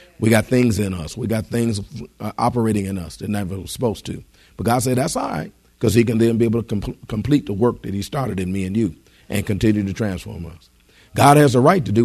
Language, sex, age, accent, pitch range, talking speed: English, male, 50-69, American, 100-135 Hz, 255 wpm